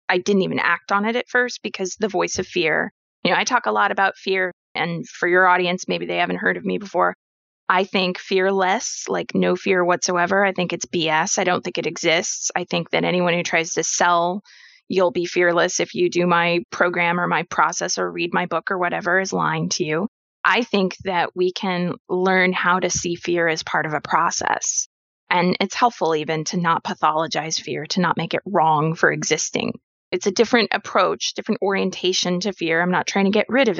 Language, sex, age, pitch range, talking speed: English, female, 20-39, 175-220 Hz, 215 wpm